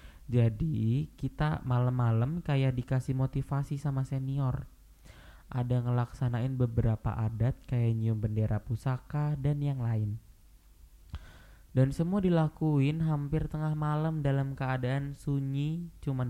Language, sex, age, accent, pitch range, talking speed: Indonesian, male, 10-29, native, 115-140 Hz, 105 wpm